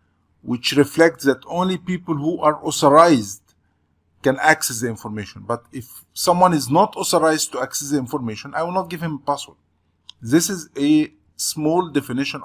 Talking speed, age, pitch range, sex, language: 165 wpm, 50-69, 95-150 Hz, male, English